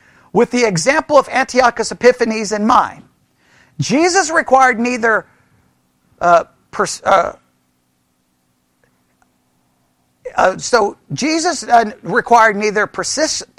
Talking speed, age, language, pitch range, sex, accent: 90 wpm, 50-69, English, 205-290 Hz, male, American